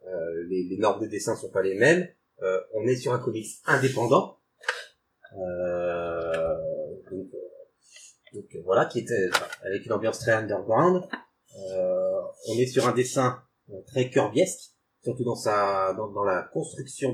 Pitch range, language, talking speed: 100-150 Hz, French, 155 wpm